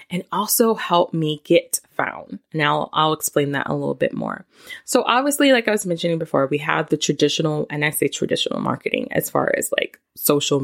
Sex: female